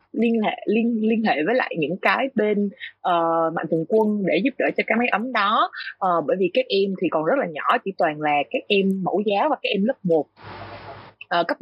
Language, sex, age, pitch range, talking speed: Vietnamese, female, 20-39, 170-235 Hz, 240 wpm